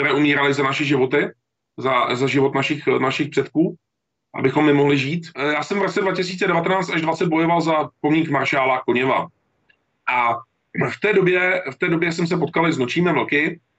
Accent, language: native, Czech